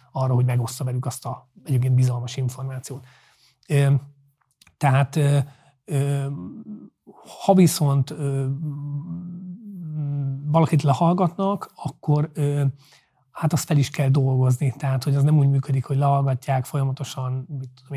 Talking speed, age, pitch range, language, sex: 125 wpm, 30-49, 130-150 Hz, Hungarian, male